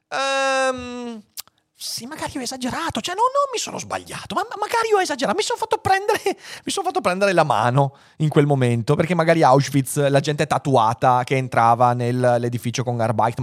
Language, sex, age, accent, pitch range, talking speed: Italian, male, 30-49, native, 115-180 Hz, 180 wpm